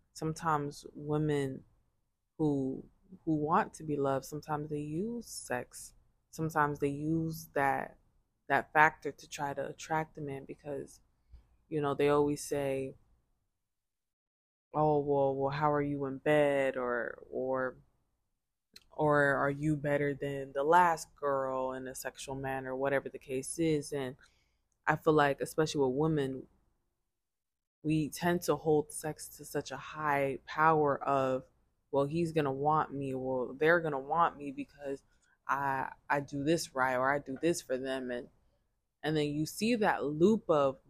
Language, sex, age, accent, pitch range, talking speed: English, female, 20-39, American, 135-150 Hz, 155 wpm